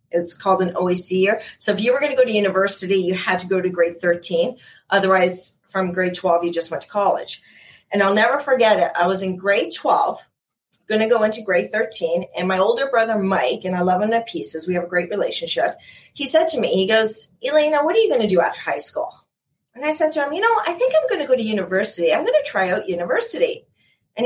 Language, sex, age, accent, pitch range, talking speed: English, female, 40-59, American, 180-275 Hz, 245 wpm